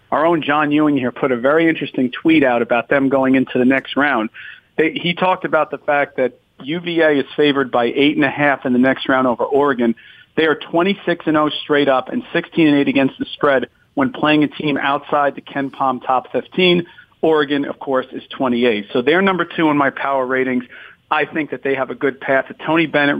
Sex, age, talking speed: male, 40-59, 215 wpm